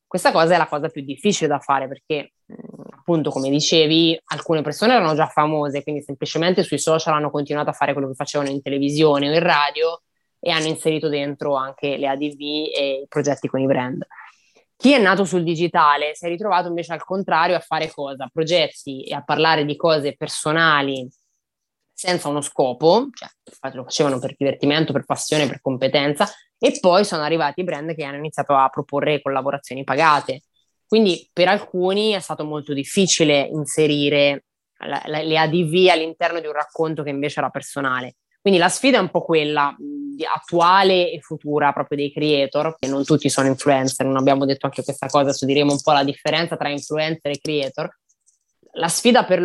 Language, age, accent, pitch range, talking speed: Italian, 20-39, native, 145-170 Hz, 180 wpm